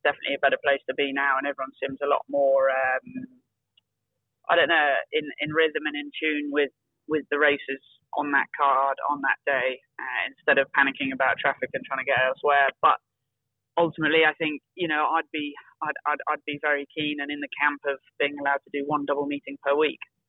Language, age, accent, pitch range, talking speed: English, 20-39, British, 135-150 Hz, 215 wpm